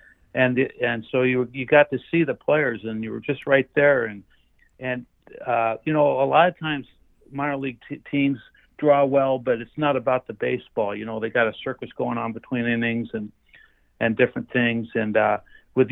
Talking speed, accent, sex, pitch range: 205 wpm, American, male, 110-130 Hz